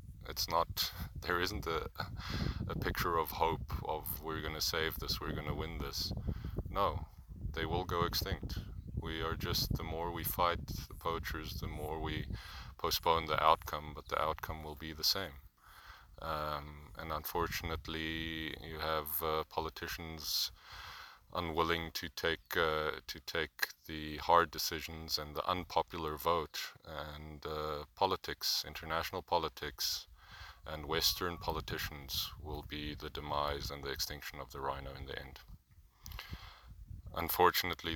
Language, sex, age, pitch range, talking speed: English, male, 30-49, 75-85 Hz, 140 wpm